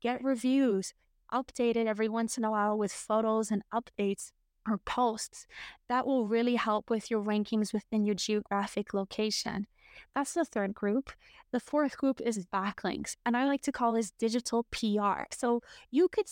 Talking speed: 165 wpm